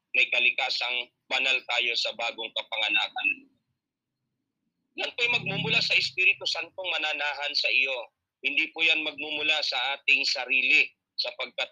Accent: Filipino